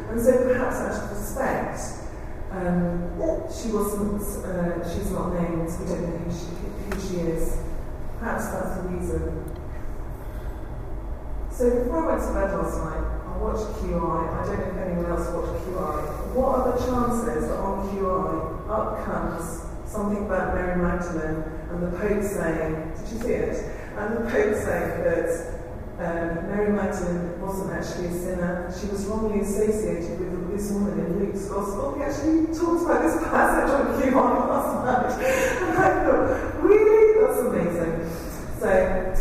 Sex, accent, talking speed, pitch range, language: female, British, 160 wpm, 175-240 Hz, English